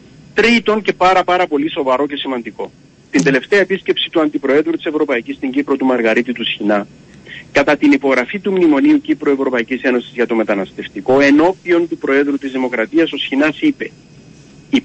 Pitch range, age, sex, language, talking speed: 135-210 Hz, 40-59, male, Greek, 165 wpm